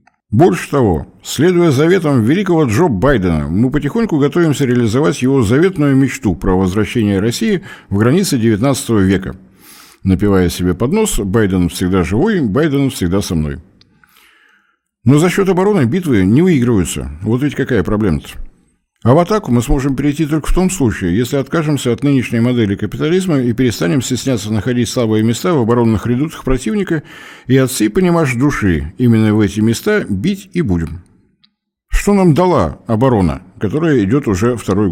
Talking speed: 150 wpm